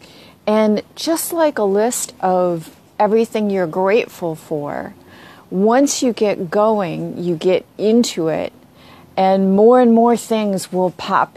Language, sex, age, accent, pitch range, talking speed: English, female, 40-59, American, 175-220 Hz, 130 wpm